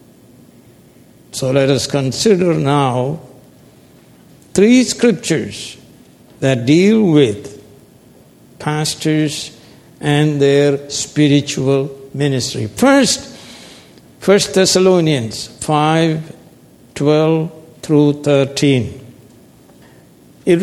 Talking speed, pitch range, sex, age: 65 wpm, 145-225 Hz, male, 60-79